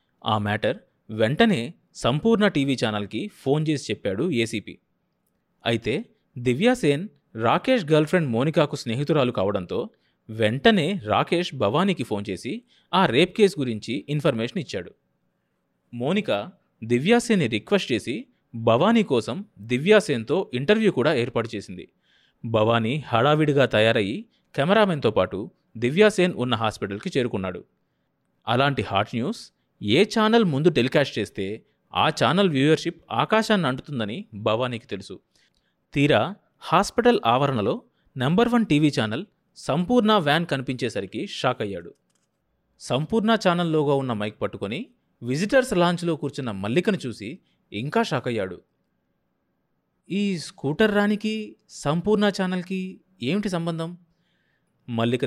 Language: Telugu